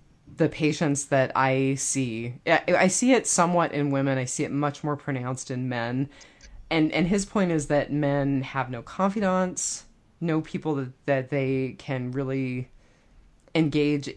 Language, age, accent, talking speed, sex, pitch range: English, 20-39, American, 160 wpm, female, 130-150 Hz